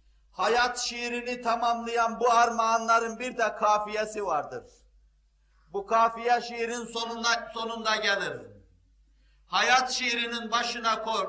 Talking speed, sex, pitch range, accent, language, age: 100 wpm, male, 205-240 Hz, native, Turkish, 50-69